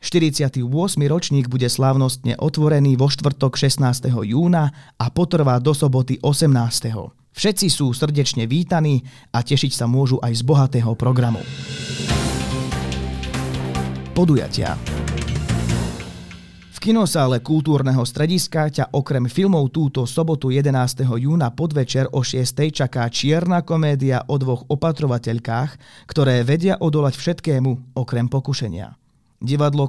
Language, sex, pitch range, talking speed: Slovak, male, 125-150 Hz, 110 wpm